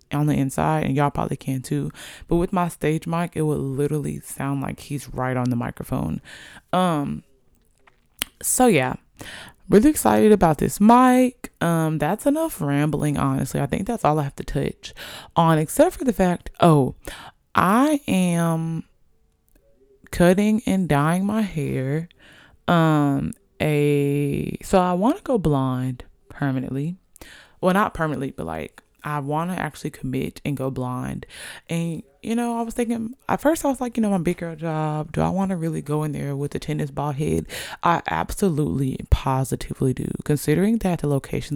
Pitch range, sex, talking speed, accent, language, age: 140-200 Hz, female, 170 wpm, American, English, 20-39